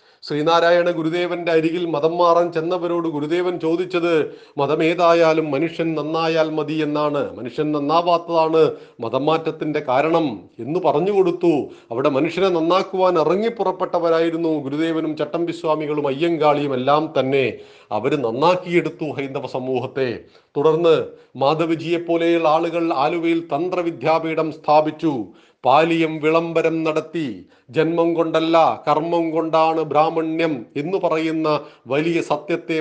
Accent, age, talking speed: native, 40-59, 90 wpm